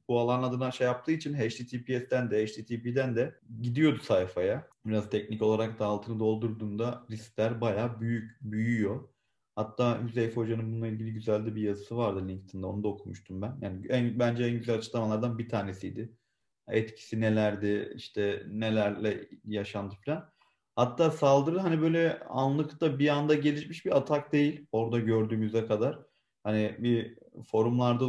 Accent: native